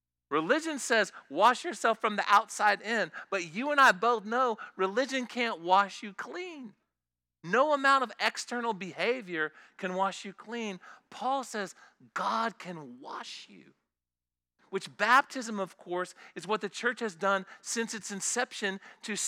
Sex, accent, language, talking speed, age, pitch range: male, American, English, 150 wpm, 40-59, 170-230 Hz